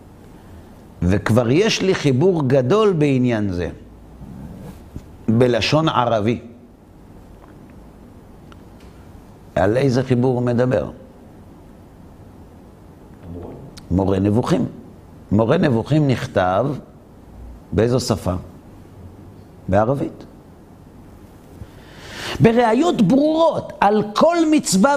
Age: 50-69